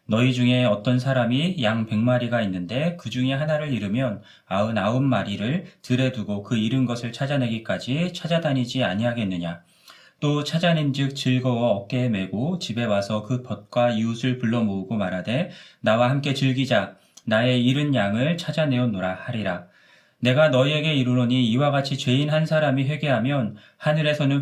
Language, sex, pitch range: Korean, male, 115-145 Hz